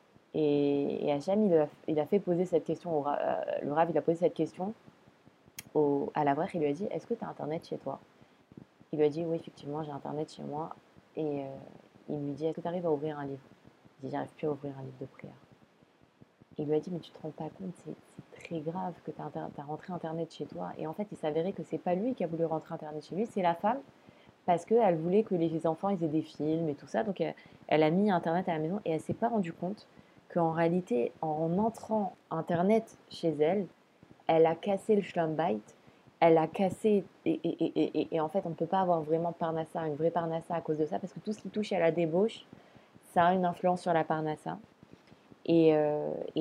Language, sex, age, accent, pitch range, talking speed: French, female, 20-39, French, 155-180 Hz, 245 wpm